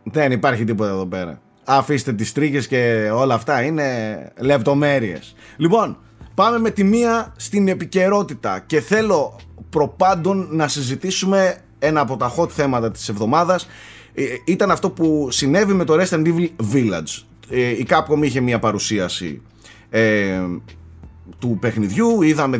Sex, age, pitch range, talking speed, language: male, 20-39, 110-175 Hz, 140 wpm, Greek